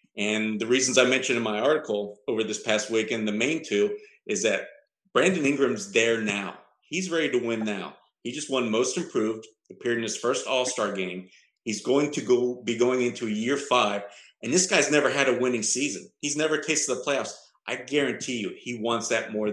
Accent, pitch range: American, 105-130 Hz